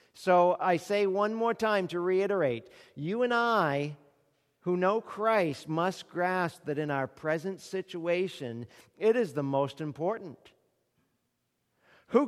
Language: English